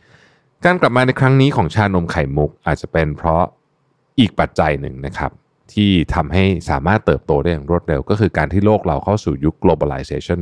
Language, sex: Thai, male